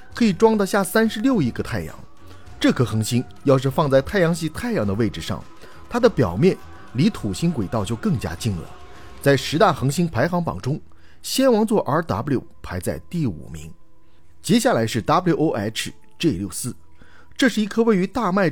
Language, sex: Chinese, male